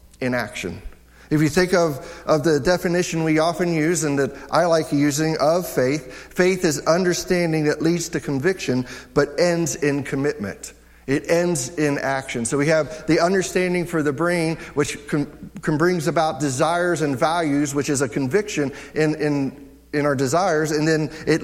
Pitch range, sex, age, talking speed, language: 115-170 Hz, male, 50-69, 170 wpm, English